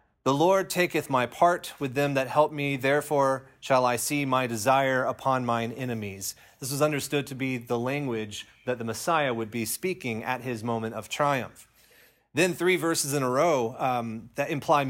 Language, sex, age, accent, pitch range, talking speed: English, male, 30-49, American, 115-150 Hz, 185 wpm